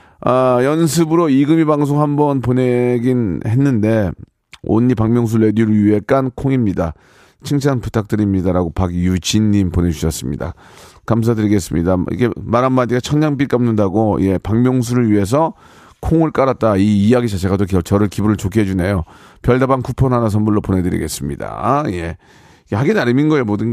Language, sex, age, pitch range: Korean, male, 40-59, 105-150 Hz